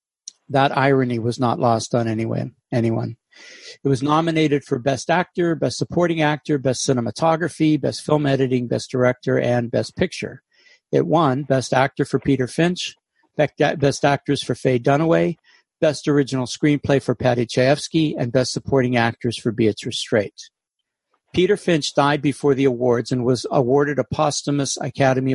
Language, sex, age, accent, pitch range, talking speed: English, male, 60-79, American, 125-155 Hz, 150 wpm